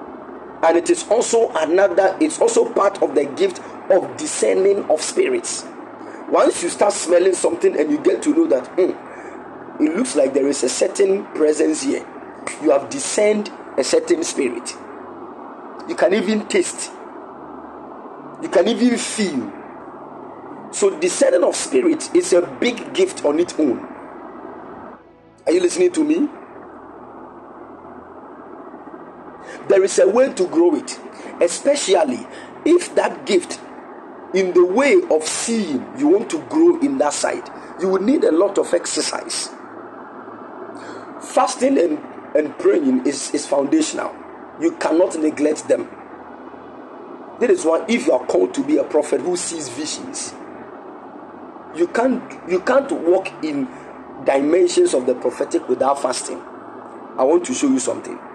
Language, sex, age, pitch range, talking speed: English, male, 50-69, 275-360 Hz, 145 wpm